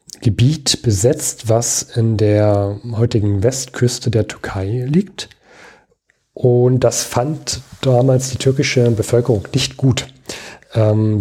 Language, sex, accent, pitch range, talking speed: German, male, German, 110-135 Hz, 105 wpm